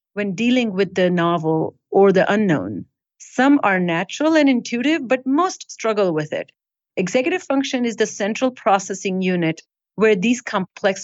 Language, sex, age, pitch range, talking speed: English, female, 40-59, 180-225 Hz, 150 wpm